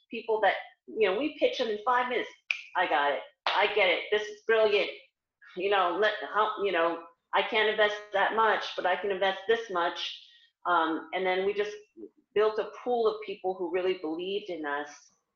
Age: 40-59